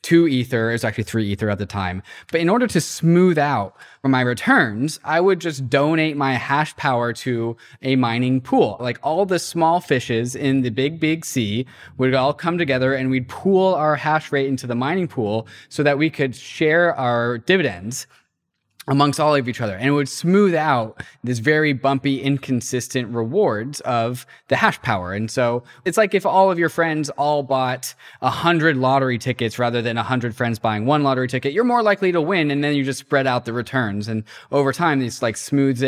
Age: 20-39